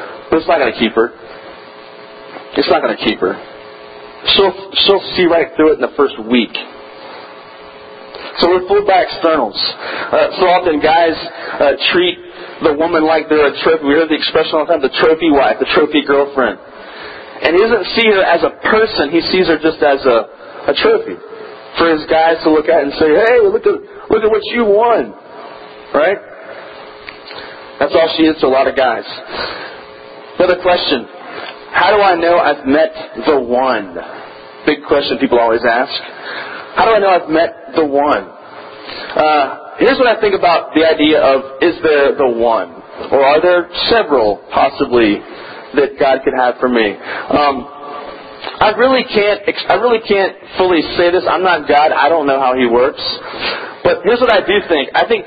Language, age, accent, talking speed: English, 40-59, American, 180 wpm